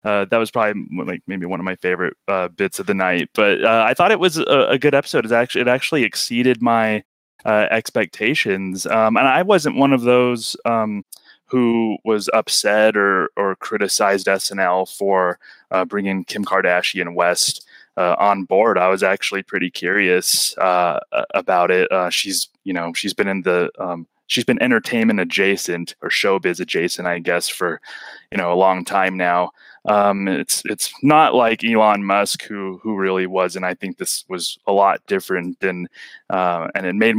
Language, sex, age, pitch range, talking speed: English, male, 20-39, 95-115 Hz, 185 wpm